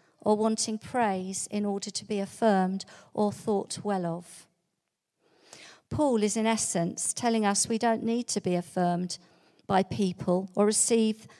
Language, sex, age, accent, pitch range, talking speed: English, female, 50-69, British, 180-220 Hz, 145 wpm